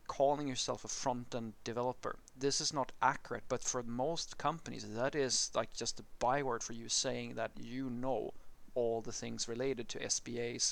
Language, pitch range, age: English, 110-125 Hz, 30-49